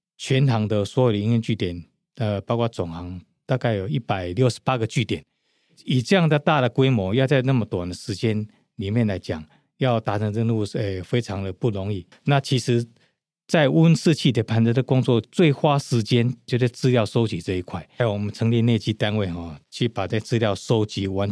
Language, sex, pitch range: Chinese, male, 100-125 Hz